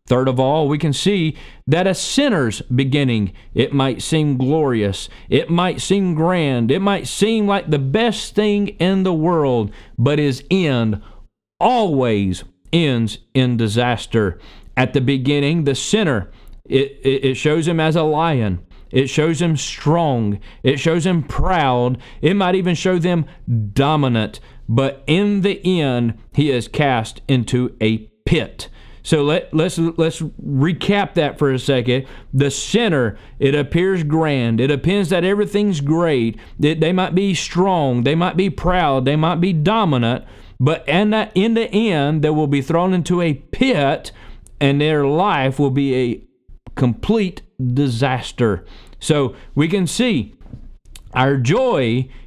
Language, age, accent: English, 40-59, American